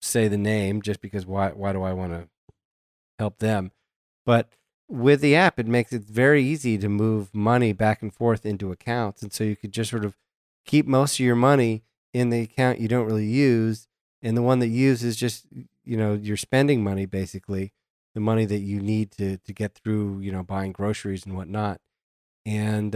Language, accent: English, American